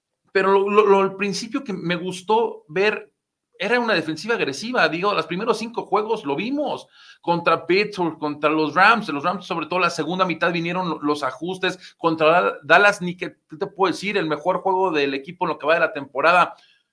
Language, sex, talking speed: Spanish, male, 200 wpm